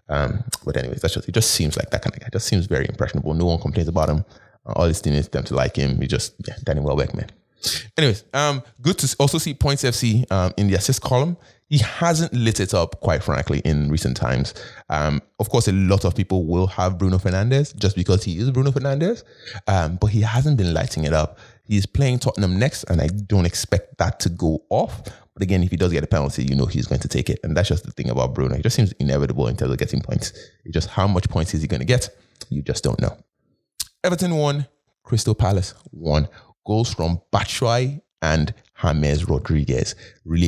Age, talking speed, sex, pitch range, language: 20-39, 230 wpm, male, 80-115 Hz, English